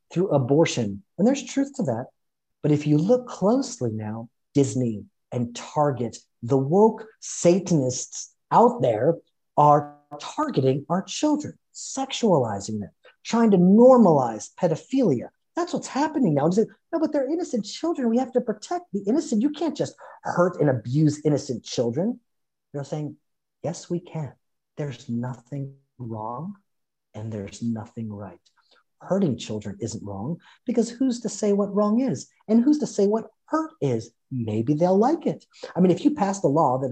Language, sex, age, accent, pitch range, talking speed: English, male, 40-59, American, 130-220 Hz, 155 wpm